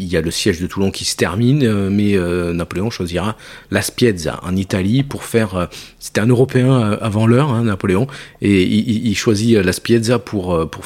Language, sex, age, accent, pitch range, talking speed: French, male, 40-59, French, 95-120 Hz, 200 wpm